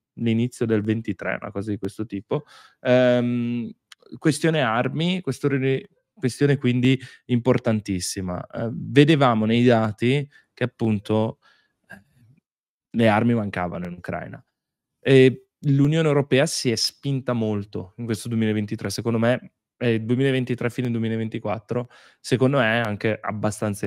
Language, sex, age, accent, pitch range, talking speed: Italian, male, 20-39, native, 100-130 Hz, 120 wpm